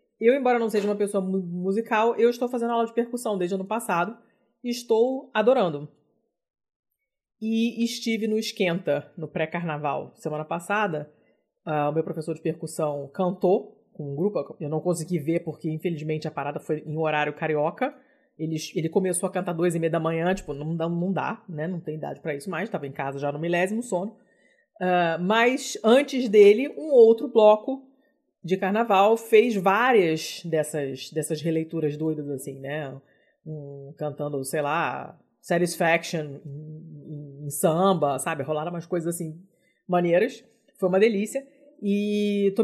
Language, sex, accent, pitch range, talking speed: Portuguese, female, Brazilian, 155-225 Hz, 160 wpm